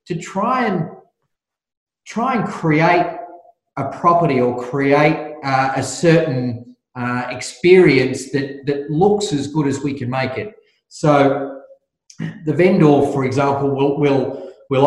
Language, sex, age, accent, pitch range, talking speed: English, male, 30-49, Australian, 125-150 Hz, 135 wpm